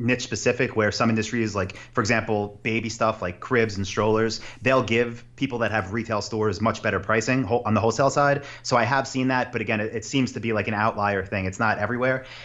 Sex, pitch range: male, 110-130 Hz